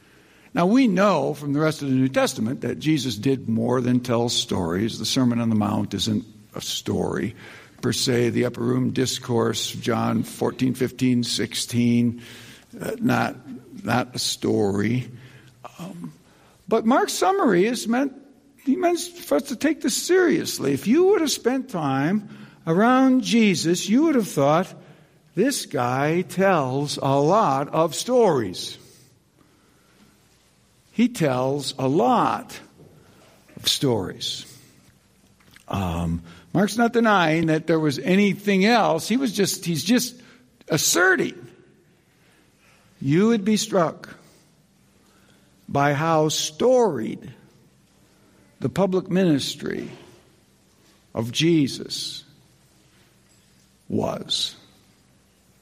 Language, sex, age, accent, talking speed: English, male, 60-79, American, 115 wpm